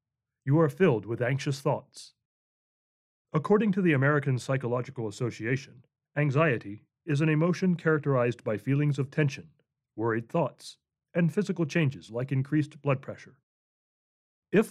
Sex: male